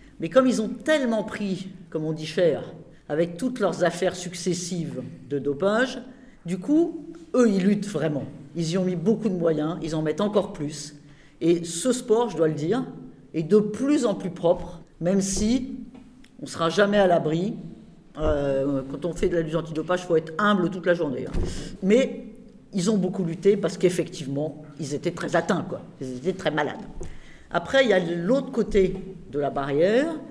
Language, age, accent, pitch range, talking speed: French, 50-69, French, 160-215 Hz, 190 wpm